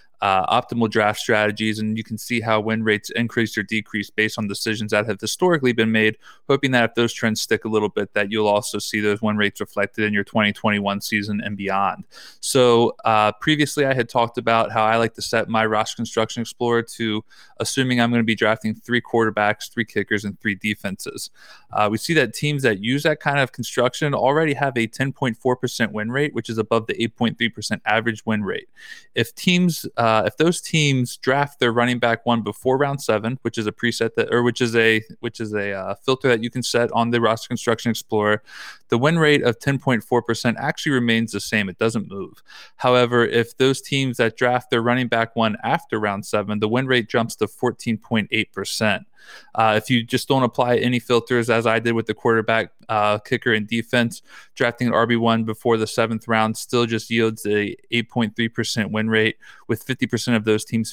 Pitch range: 110-125 Hz